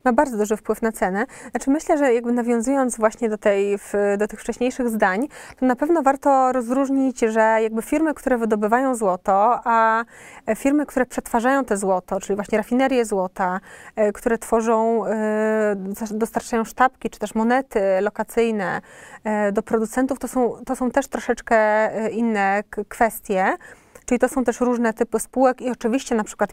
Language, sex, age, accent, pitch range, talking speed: Polish, female, 20-39, native, 210-250 Hz, 155 wpm